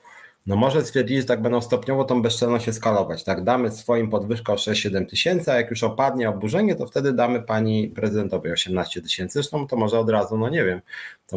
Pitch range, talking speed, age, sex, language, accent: 105-130 Hz, 195 wpm, 30-49, male, Polish, native